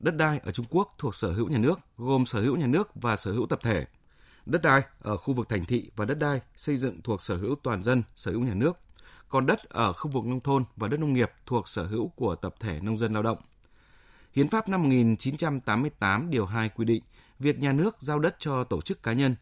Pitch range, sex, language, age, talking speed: 110-145 Hz, male, Vietnamese, 20-39, 245 wpm